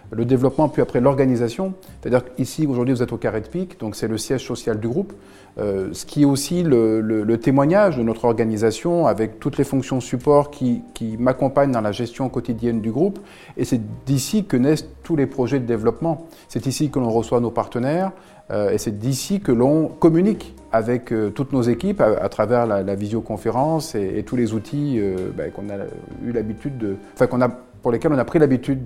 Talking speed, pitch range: 210 wpm, 115-145 Hz